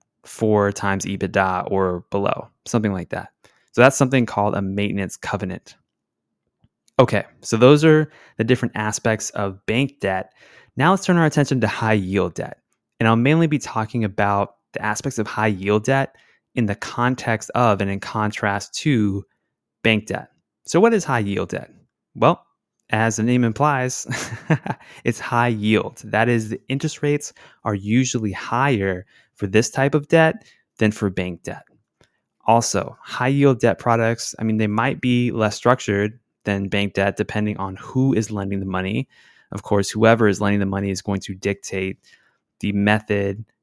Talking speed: 170 wpm